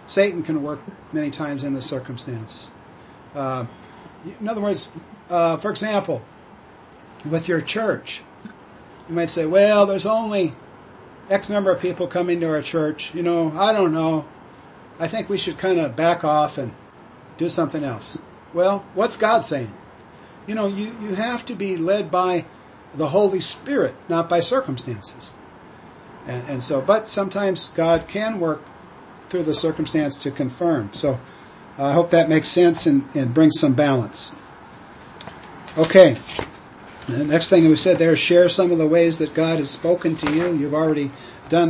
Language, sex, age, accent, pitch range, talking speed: English, male, 50-69, American, 145-175 Hz, 165 wpm